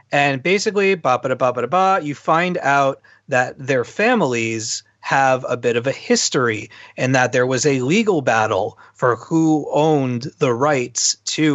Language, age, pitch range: English, 30-49, 125-165 Hz